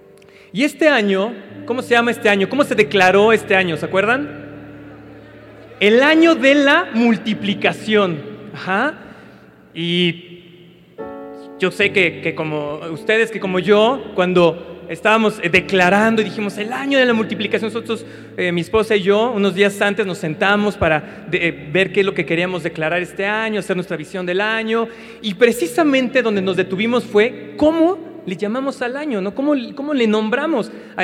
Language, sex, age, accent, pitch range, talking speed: Spanish, male, 40-59, Mexican, 175-230 Hz, 165 wpm